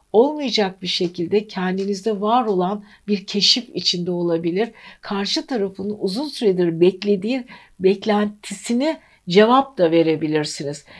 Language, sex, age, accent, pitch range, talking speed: Turkish, female, 60-79, native, 170-220 Hz, 105 wpm